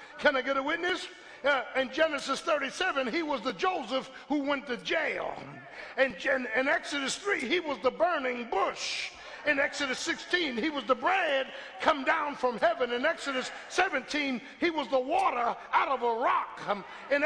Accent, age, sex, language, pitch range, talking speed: American, 50-69, male, English, 270-360 Hz, 175 wpm